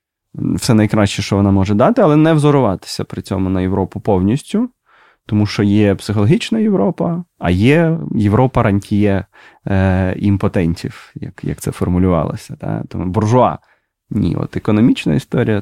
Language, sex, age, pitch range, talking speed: Ukrainian, male, 20-39, 100-145 Hz, 140 wpm